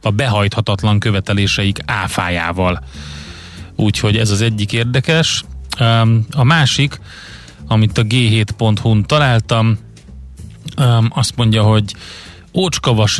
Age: 30-49